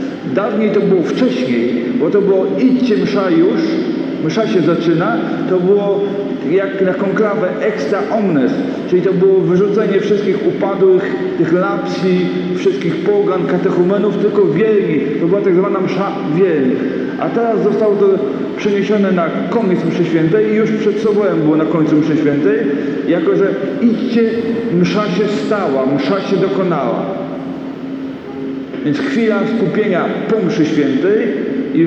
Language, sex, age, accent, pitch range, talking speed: Polish, male, 40-59, native, 150-215 Hz, 135 wpm